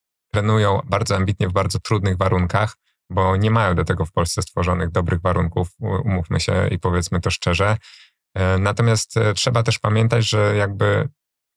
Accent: native